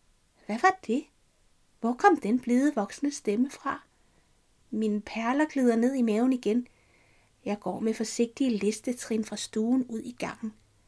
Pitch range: 220-275 Hz